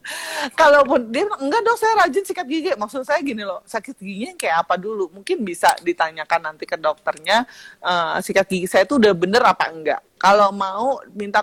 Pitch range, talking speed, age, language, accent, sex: 170-225 Hz, 185 wpm, 30-49, Indonesian, native, female